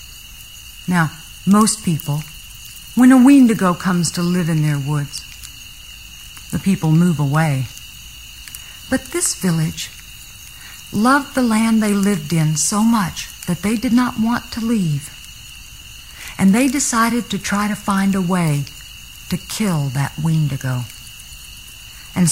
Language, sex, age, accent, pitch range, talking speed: English, female, 50-69, American, 150-210 Hz, 130 wpm